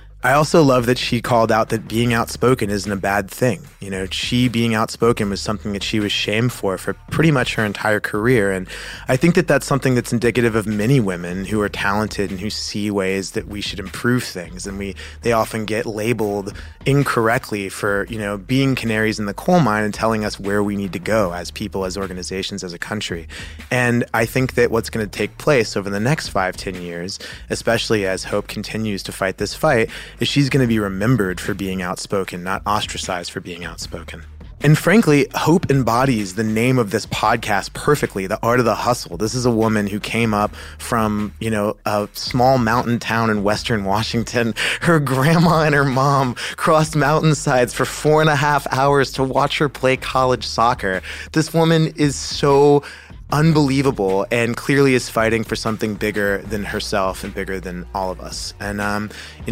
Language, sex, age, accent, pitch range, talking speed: English, male, 20-39, American, 100-125 Hz, 200 wpm